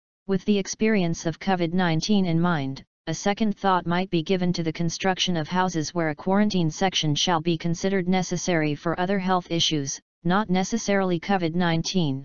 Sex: female